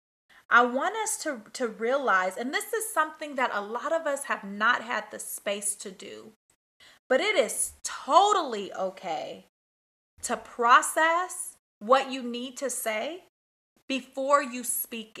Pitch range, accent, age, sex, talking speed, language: 205-265 Hz, American, 30-49, female, 145 wpm, English